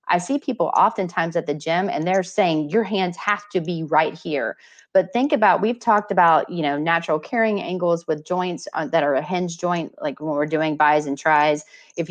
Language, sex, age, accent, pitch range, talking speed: English, female, 30-49, American, 160-195 Hz, 215 wpm